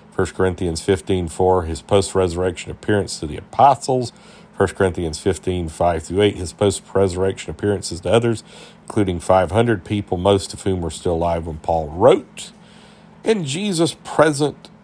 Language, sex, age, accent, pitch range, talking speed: English, male, 50-69, American, 85-115 Hz, 140 wpm